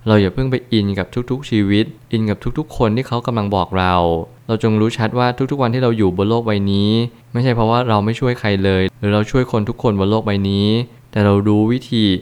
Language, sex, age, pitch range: Thai, male, 20-39, 100-115 Hz